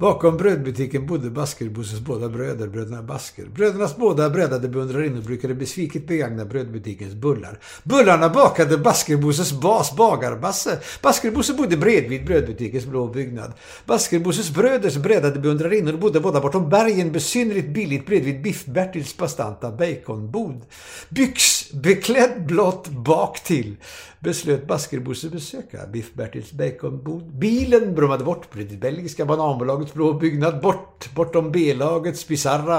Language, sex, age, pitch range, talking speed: Swedish, male, 60-79, 130-180 Hz, 125 wpm